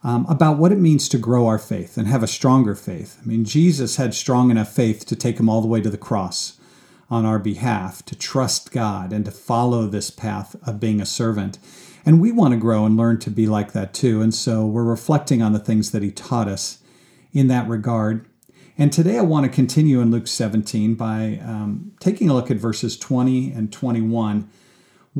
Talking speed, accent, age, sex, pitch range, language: 215 wpm, American, 50-69, male, 110-140 Hz, English